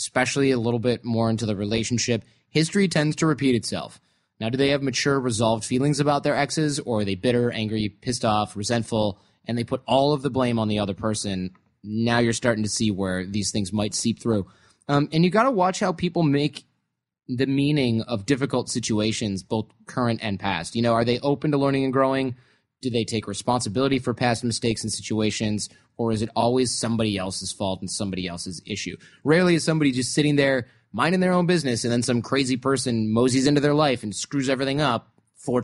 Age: 20-39